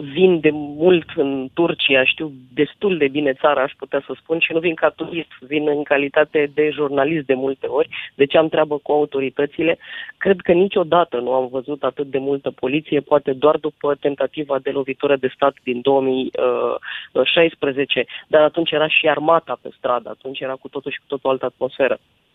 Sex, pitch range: female, 140-170 Hz